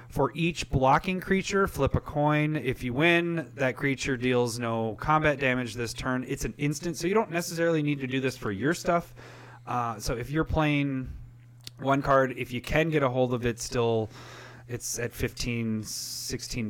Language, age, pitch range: English, 30-49, 115-135 Hz